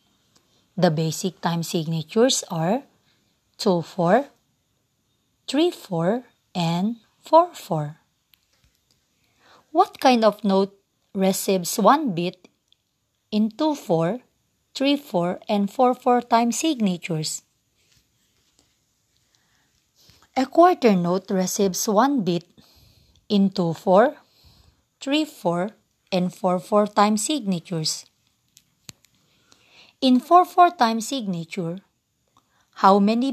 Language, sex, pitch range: English, female, 175-240 Hz